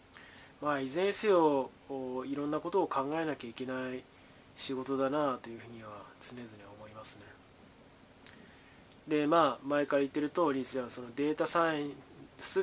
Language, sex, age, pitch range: Japanese, male, 20-39, 125-150 Hz